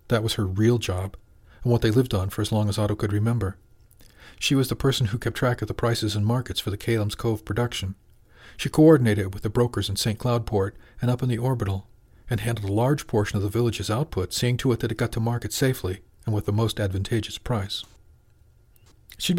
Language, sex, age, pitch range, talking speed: English, male, 40-59, 105-120 Hz, 225 wpm